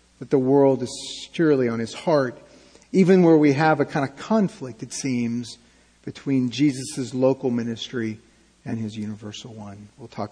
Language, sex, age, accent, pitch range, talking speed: English, male, 40-59, American, 135-185 Hz, 165 wpm